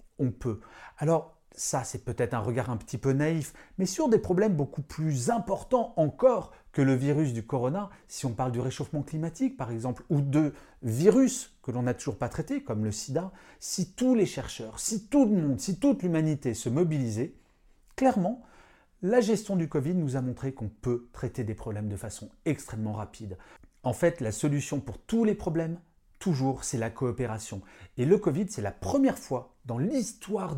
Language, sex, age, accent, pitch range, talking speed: French, male, 40-59, French, 115-165 Hz, 190 wpm